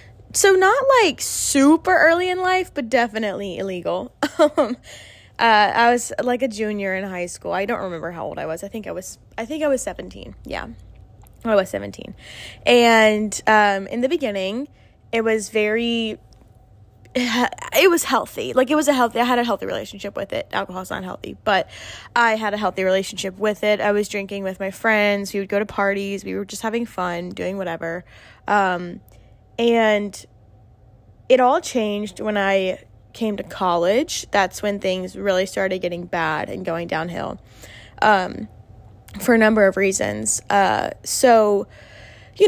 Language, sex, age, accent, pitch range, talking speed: English, female, 10-29, American, 190-235 Hz, 170 wpm